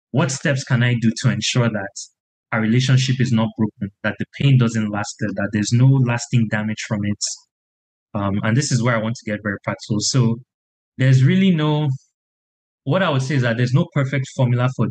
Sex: male